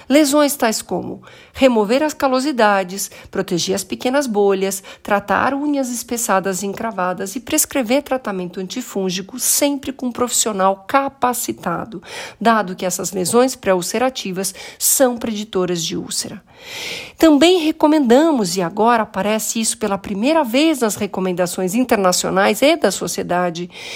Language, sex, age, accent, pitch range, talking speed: Portuguese, female, 50-69, Brazilian, 195-270 Hz, 120 wpm